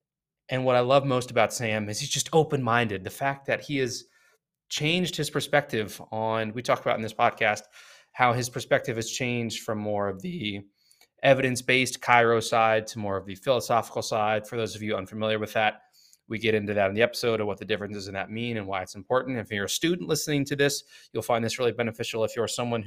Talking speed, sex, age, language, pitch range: 220 wpm, male, 20-39, English, 110-130 Hz